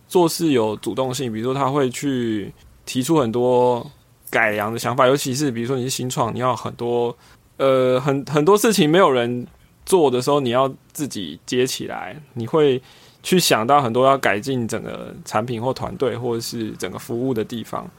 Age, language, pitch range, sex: 20-39, Chinese, 120-145 Hz, male